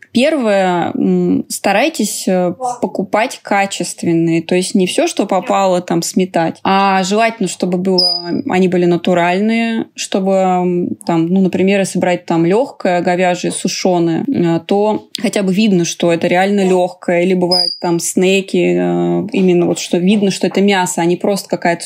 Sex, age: female, 20-39